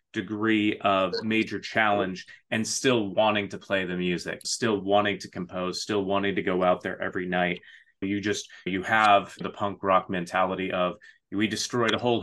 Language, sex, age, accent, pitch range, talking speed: English, male, 30-49, American, 100-115 Hz, 175 wpm